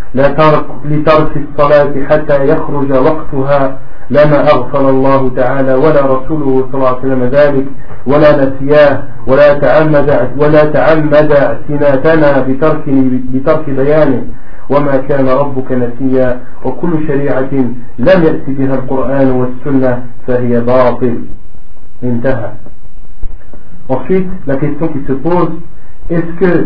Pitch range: 130-155 Hz